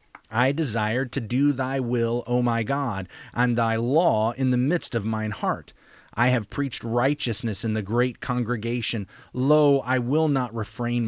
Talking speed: 170 wpm